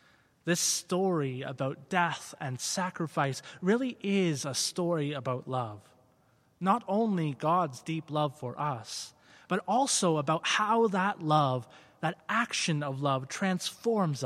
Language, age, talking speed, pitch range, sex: English, 20-39, 125 wpm, 130-175 Hz, male